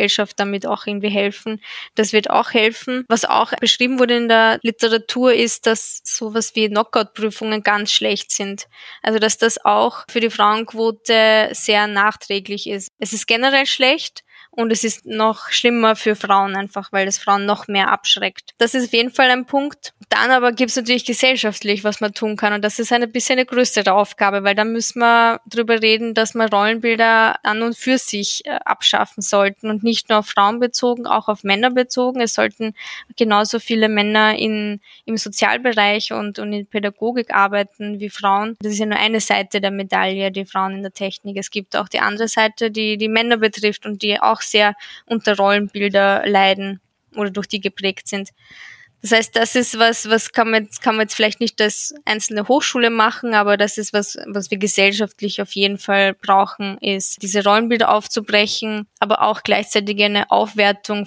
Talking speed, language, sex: 185 wpm, German, female